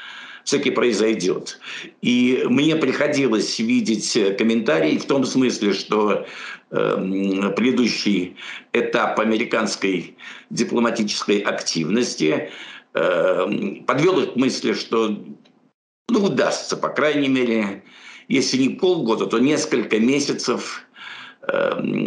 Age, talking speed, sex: 60-79, 90 wpm, male